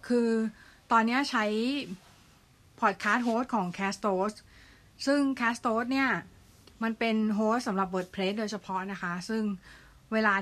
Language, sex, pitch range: Thai, female, 190-230 Hz